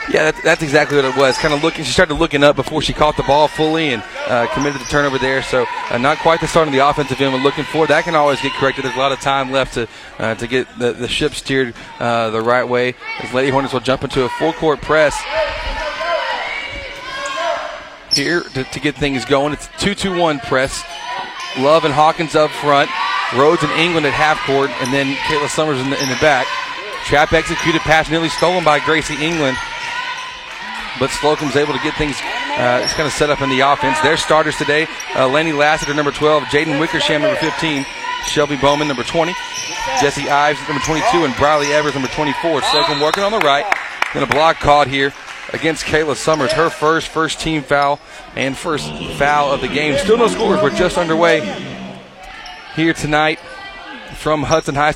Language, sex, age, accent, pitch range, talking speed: English, male, 30-49, American, 140-165 Hz, 200 wpm